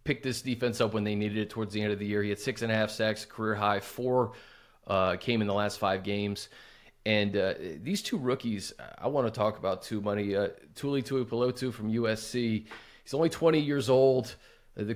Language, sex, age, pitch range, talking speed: English, male, 30-49, 110-130 Hz, 220 wpm